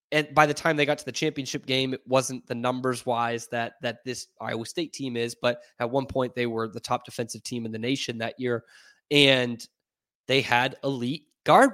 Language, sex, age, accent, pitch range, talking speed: English, male, 20-39, American, 120-150 Hz, 215 wpm